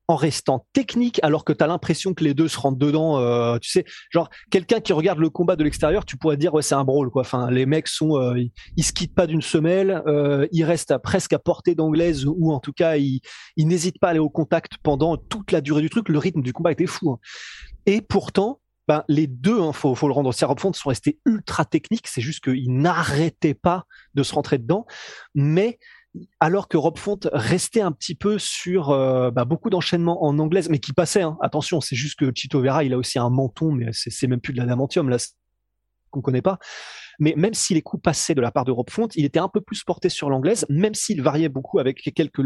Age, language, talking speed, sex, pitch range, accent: 20-39, French, 245 wpm, male, 140-185 Hz, French